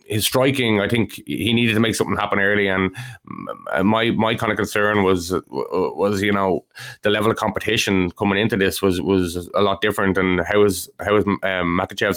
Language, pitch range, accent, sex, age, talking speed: English, 95-110 Hz, Irish, male, 20-39, 205 wpm